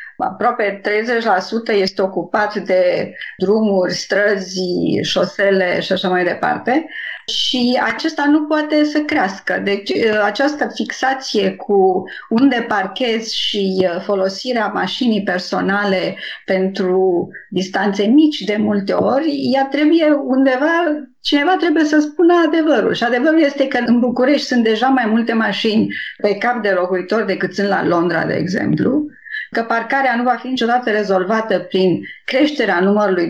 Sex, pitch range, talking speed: female, 200-260 Hz, 130 wpm